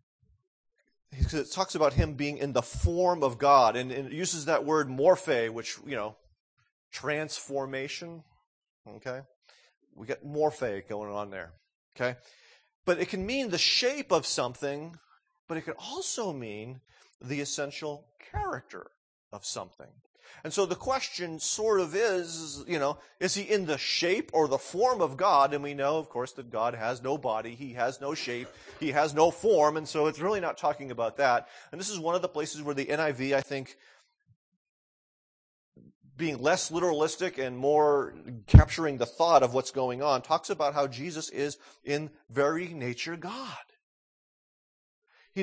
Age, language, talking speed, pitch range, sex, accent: 30-49, English, 165 wpm, 135-175 Hz, male, American